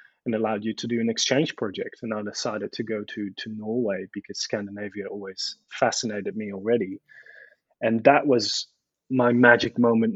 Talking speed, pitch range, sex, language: 165 wpm, 105-120 Hz, male, English